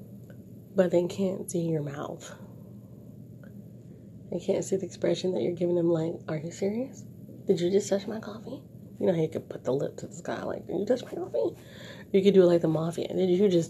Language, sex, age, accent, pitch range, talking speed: English, female, 30-49, American, 165-205 Hz, 225 wpm